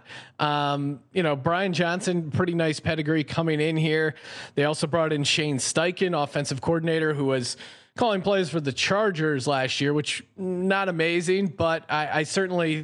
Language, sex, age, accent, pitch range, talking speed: English, male, 30-49, American, 140-170 Hz, 165 wpm